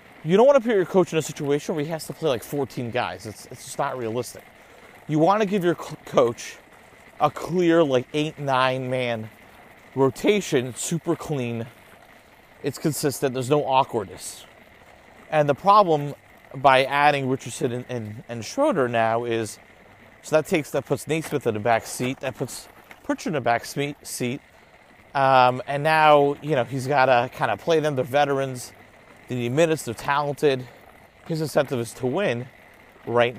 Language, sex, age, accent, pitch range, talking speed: English, male, 30-49, American, 120-150 Hz, 175 wpm